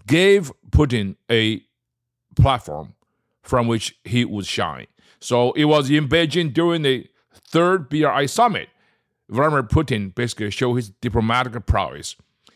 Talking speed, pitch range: 125 wpm, 100-130 Hz